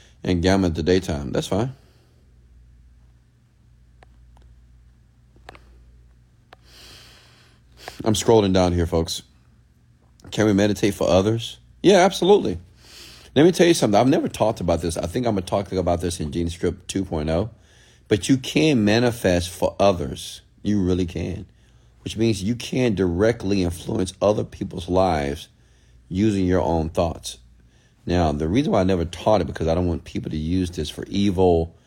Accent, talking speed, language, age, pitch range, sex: American, 150 wpm, English, 40-59, 75-100 Hz, male